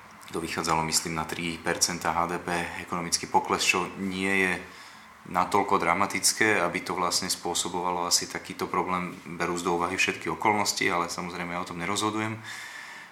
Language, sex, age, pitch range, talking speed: Slovak, male, 30-49, 90-100 Hz, 135 wpm